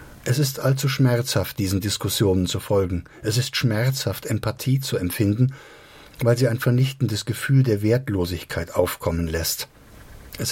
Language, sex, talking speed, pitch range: German, male, 135 wpm, 105-135 Hz